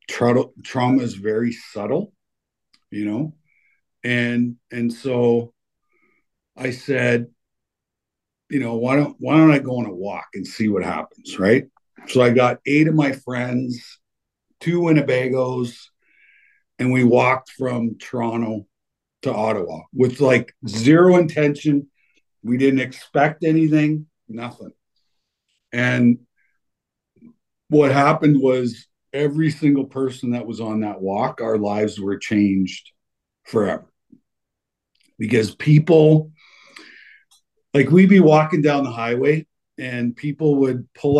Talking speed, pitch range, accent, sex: 120 wpm, 115-140 Hz, American, male